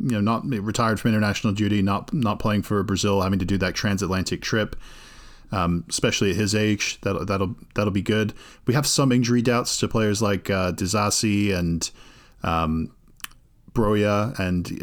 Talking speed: 170 wpm